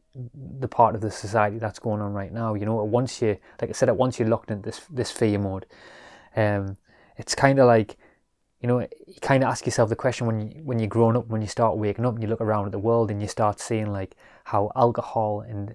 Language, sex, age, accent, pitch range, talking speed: English, male, 20-39, British, 105-120 Hz, 250 wpm